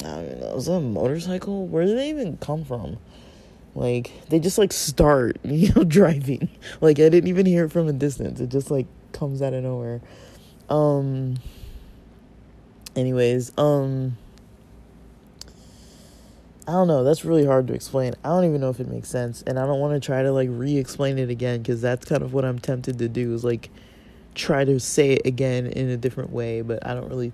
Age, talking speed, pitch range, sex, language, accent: 20-39, 200 wpm, 125-145 Hz, male, English, American